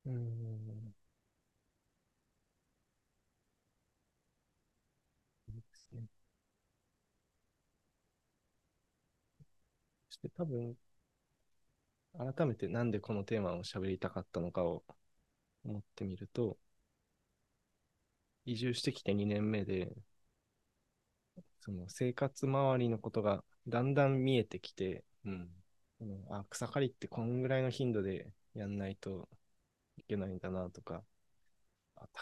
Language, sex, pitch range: Japanese, male, 95-120 Hz